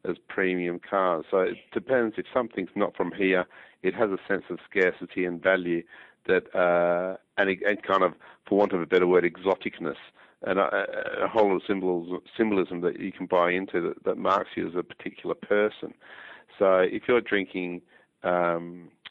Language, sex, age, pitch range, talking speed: English, male, 50-69, 90-105 Hz, 185 wpm